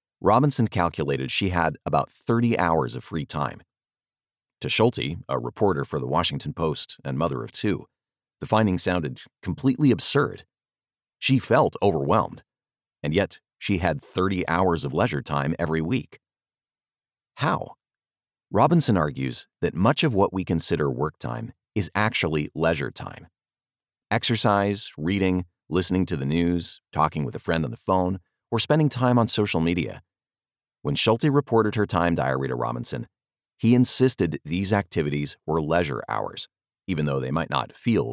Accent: American